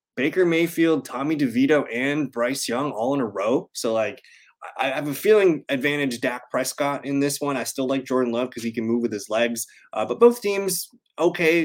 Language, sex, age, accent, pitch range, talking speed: English, male, 20-39, American, 125-185 Hz, 205 wpm